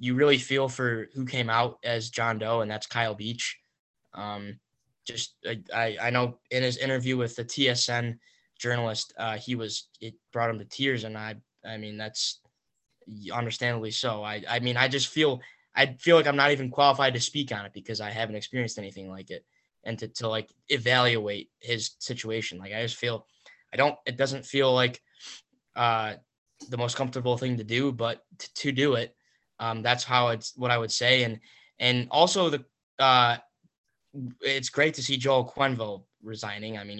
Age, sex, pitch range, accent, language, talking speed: 10-29, male, 115-135 Hz, American, English, 185 wpm